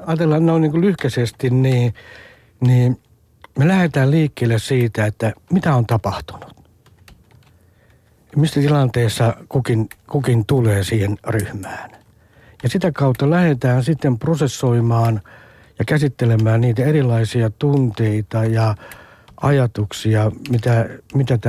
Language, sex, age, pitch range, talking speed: Finnish, male, 60-79, 110-140 Hz, 105 wpm